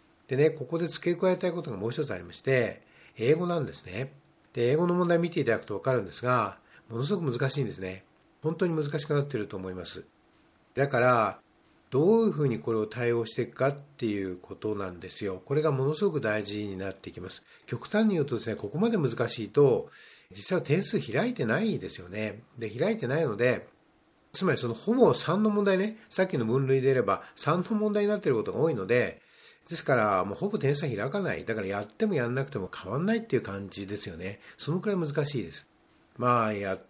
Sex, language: male, Japanese